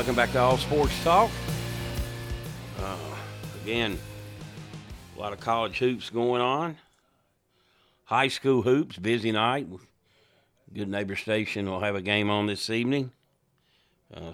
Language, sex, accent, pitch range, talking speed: English, male, American, 90-115 Hz, 130 wpm